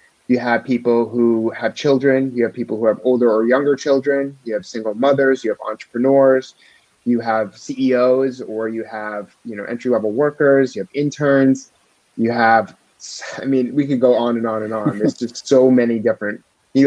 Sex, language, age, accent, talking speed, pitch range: male, English, 30-49, American, 190 wpm, 110-130 Hz